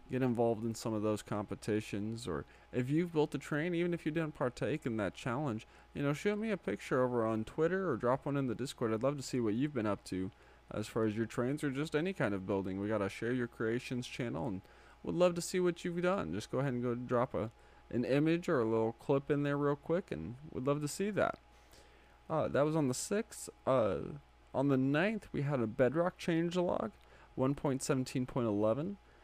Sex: male